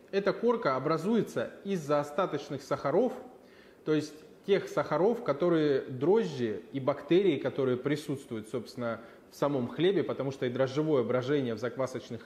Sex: male